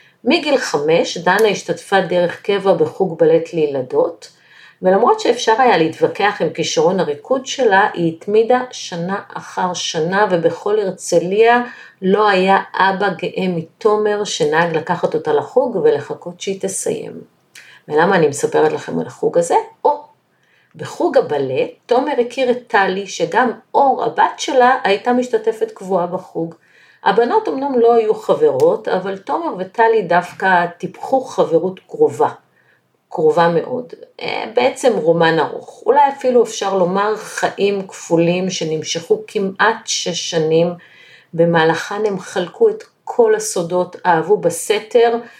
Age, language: 50-69, Hebrew